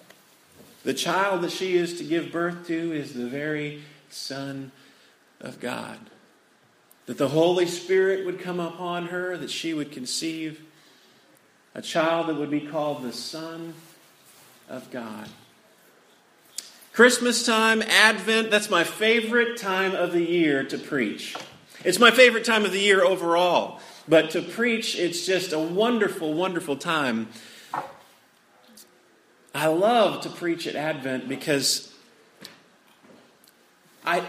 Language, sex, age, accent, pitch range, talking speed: English, male, 40-59, American, 150-195 Hz, 130 wpm